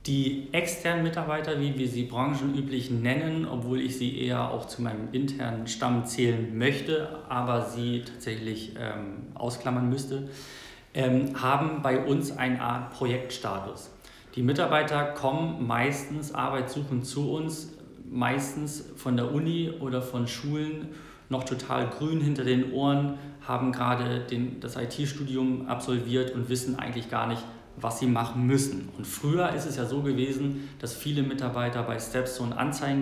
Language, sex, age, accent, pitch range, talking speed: German, male, 40-59, German, 115-135 Hz, 145 wpm